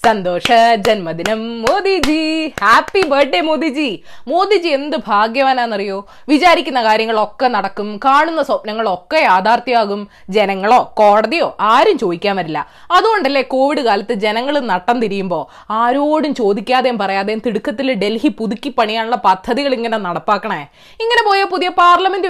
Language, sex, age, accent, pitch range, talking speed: Malayalam, female, 20-39, native, 230-335 Hz, 110 wpm